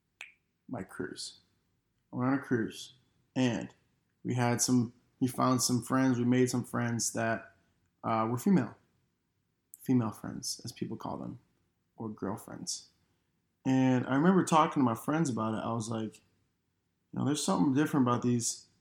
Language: English